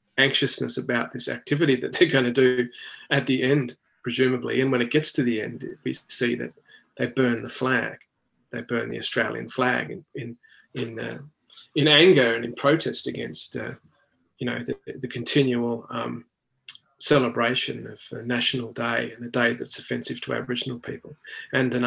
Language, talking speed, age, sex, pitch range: English, 175 wpm, 30-49, male, 120-135 Hz